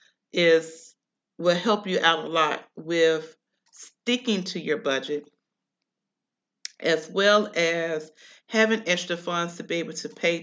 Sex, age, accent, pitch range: female, 40-59, American, 160-200 Hz